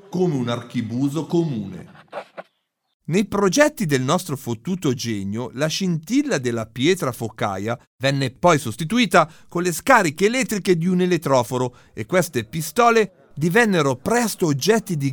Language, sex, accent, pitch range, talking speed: Italian, male, native, 125-180 Hz, 125 wpm